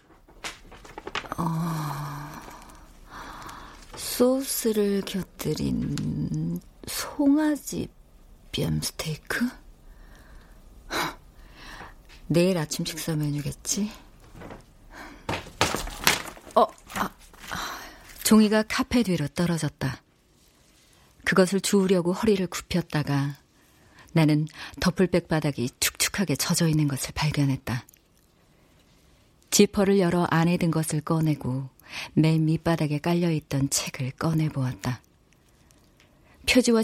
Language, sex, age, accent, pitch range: Korean, female, 40-59, native, 145-195 Hz